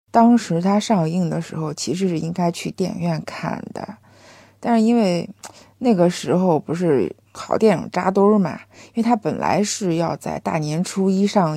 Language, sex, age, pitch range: Chinese, female, 50-69, 160-210 Hz